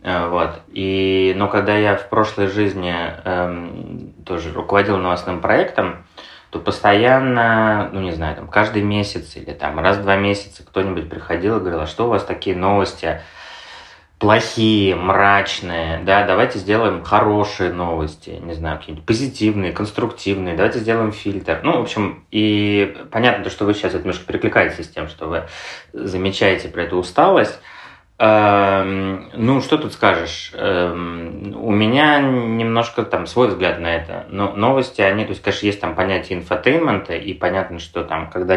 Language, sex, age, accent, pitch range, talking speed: Russian, male, 20-39, native, 90-105 Hz, 155 wpm